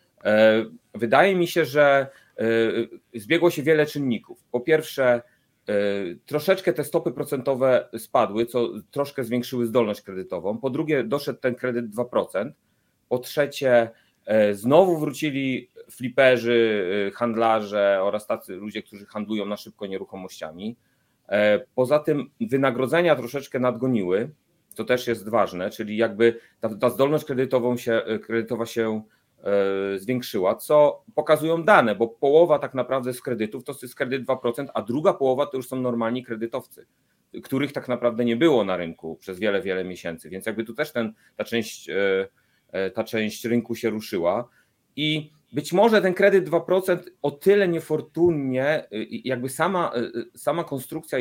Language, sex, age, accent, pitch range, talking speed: Polish, male, 30-49, native, 115-145 Hz, 135 wpm